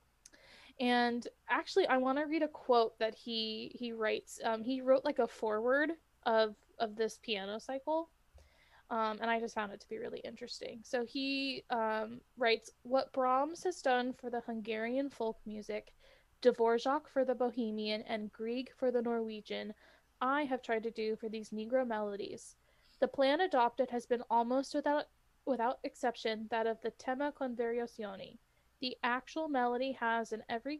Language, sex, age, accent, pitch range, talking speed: English, female, 20-39, American, 225-265 Hz, 165 wpm